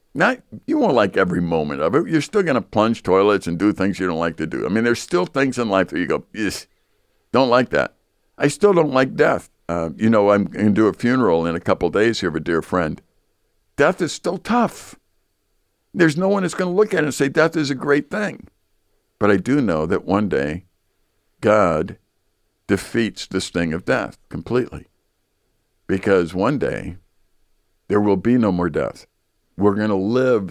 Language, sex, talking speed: English, male, 210 wpm